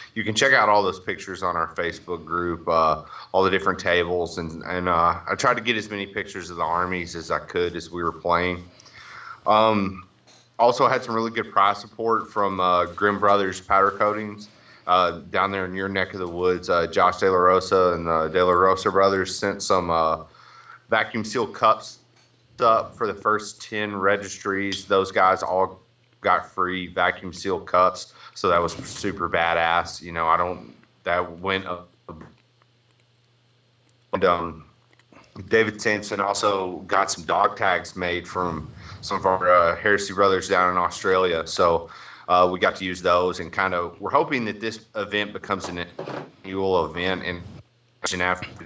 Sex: male